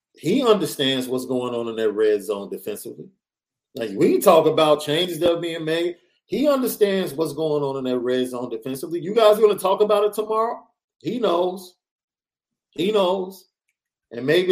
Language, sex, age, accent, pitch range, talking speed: English, male, 40-59, American, 145-215 Hz, 180 wpm